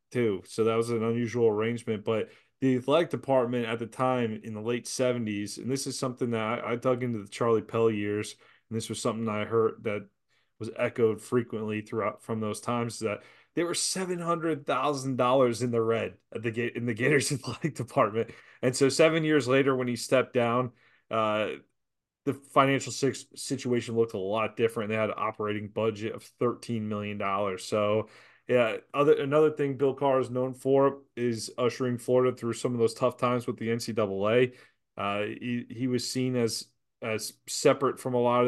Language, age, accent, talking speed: English, 20-39, American, 185 wpm